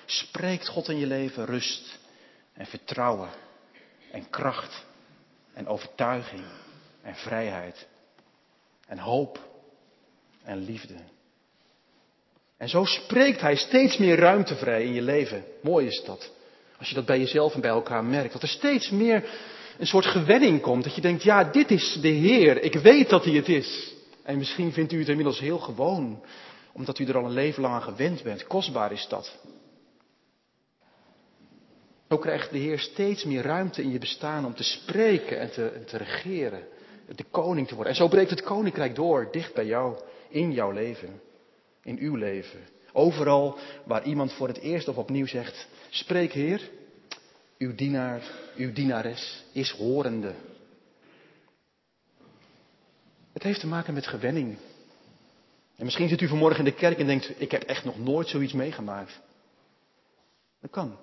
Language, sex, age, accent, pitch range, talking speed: Dutch, male, 40-59, Dutch, 130-175 Hz, 160 wpm